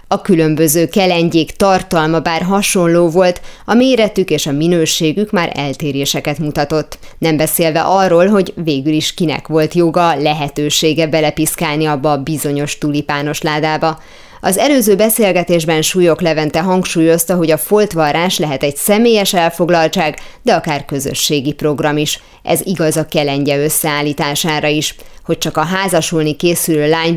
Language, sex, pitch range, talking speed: Hungarian, female, 150-180 Hz, 135 wpm